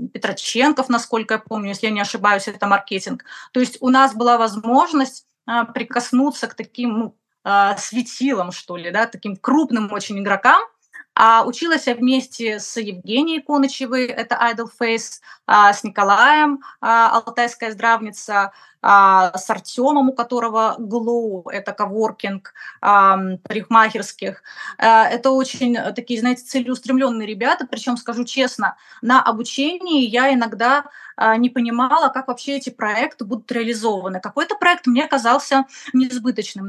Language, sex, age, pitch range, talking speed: Russian, female, 20-39, 215-255 Hz, 135 wpm